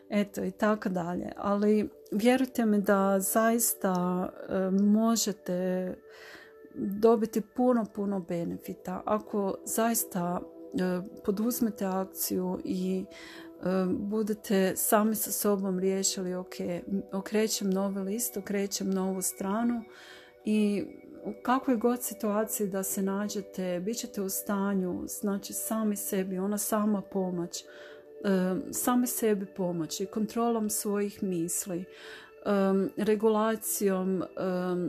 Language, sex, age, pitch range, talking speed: Croatian, female, 40-59, 185-215 Hz, 95 wpm